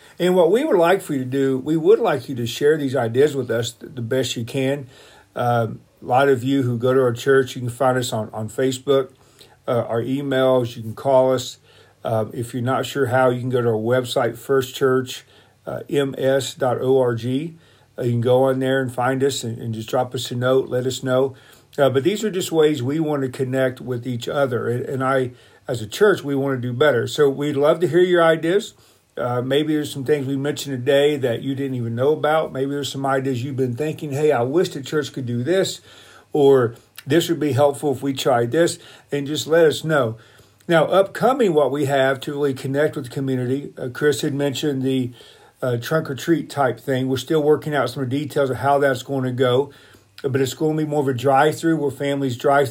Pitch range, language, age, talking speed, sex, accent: 125-145 Hz, English, 50-69, 225 wpm, male, American